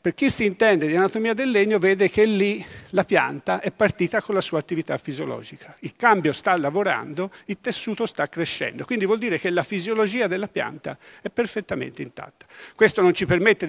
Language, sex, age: Italian, male, 50-69